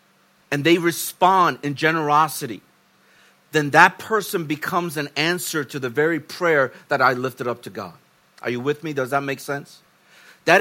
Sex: male